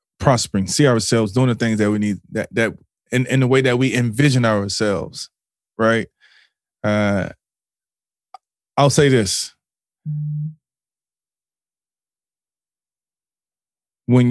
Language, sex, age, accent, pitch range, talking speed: English, male, 20-39, American, 100-130 Hz, 105 wpm